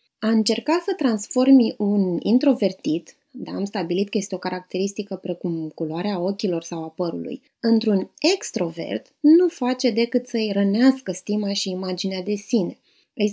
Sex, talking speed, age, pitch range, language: female, 145 wpm, 20-39, 195-250 Hz, Romanian